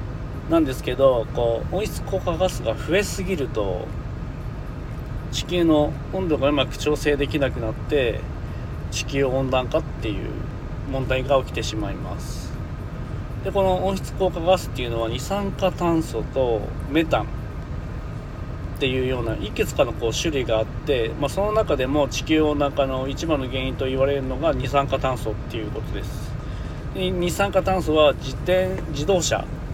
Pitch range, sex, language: 120-160 Hz, male, Japanese